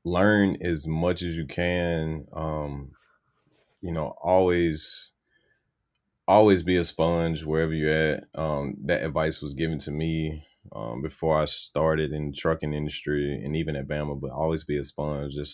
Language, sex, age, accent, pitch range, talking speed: English, male, 20-39, American, 75-85 Hz, 160 wpm